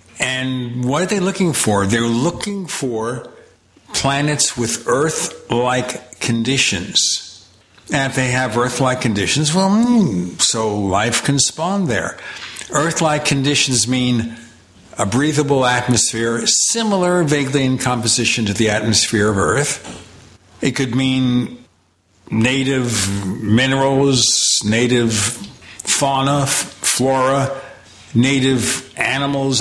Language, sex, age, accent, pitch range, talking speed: English, male, 60-79, American, 115-140 Hz, 105 wpm